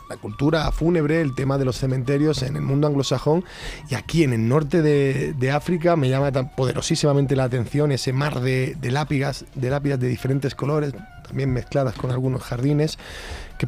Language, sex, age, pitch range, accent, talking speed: Spanish, male, 30-49, 125-150 Hz, Spanish, 185 wpm